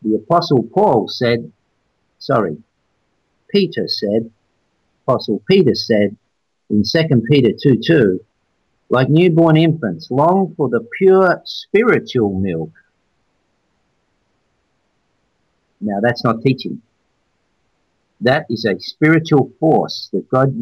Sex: male